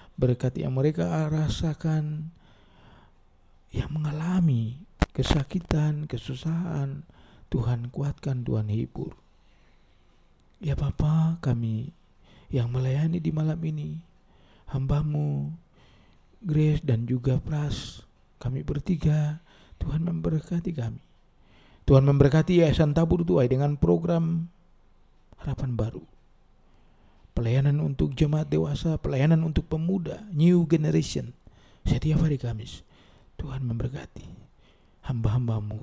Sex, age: male, 50-69